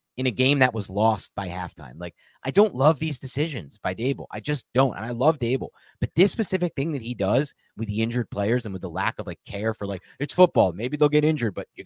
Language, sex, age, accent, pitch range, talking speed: English, male, 30-49, American, 110-155 Hz, 260 wpm